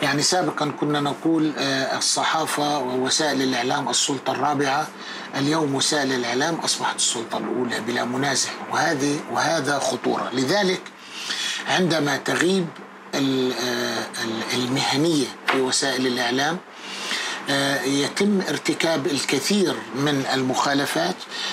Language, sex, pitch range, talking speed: Arabic, male, 130-155 Hz, 90 wpm